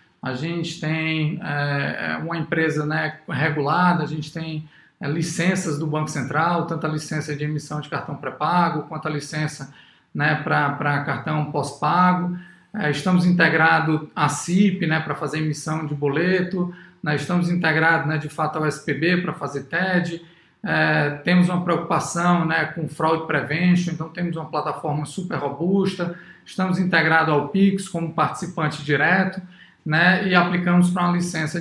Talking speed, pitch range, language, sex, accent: 140 wpm, 155-185 Hz, Portuguese, male, Brazilian